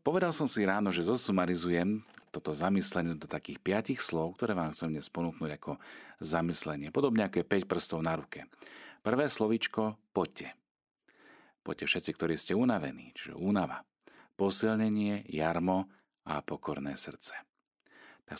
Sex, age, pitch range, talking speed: male, 40-59, 80-105 Hz, 135 wpm